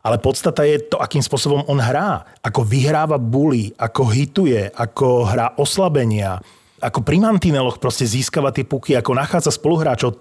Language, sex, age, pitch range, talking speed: Slovak, male, 30-49, 115-150 Hz, 145 wpm